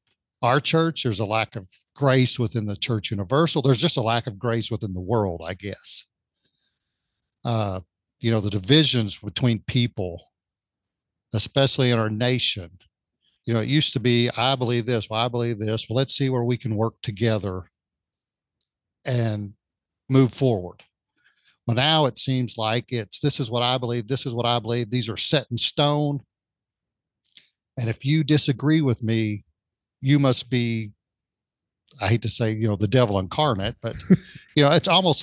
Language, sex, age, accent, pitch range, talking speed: English, male, 50-69, American, 110-140 Hz, 170 wpm